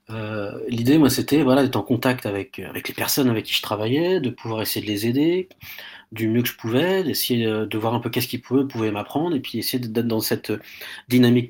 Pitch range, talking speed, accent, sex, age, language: 110-130 Hz, 225 wpm, French, male, 40-59, French